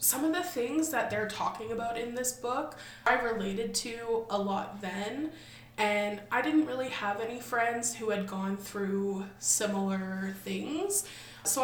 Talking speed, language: 160 wpm, English